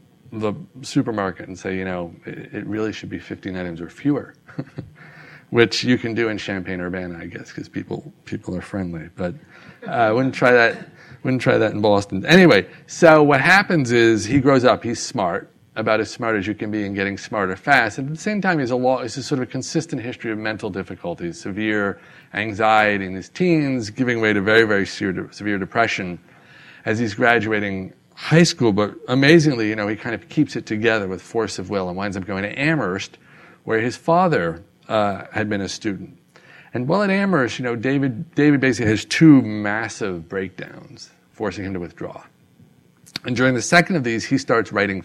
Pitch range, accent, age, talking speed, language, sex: 100-145 Hz, American, 40-59, 200 wpm, English, male